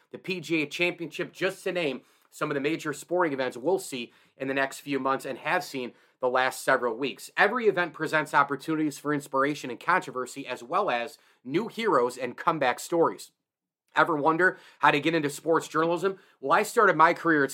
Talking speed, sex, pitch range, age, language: 190 wpm, male, 140-170 Hz, 30-49, English